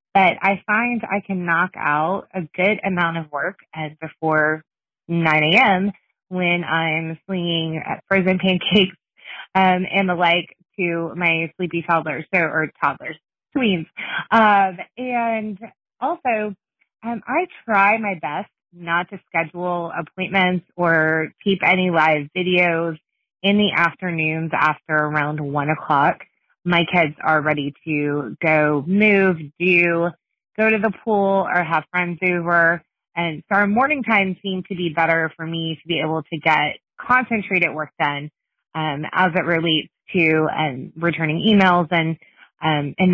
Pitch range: 160-195 Hz